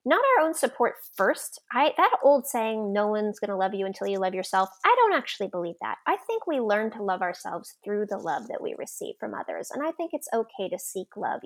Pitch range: 195-235 Hz